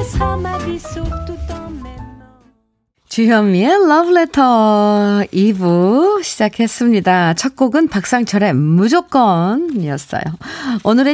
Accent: native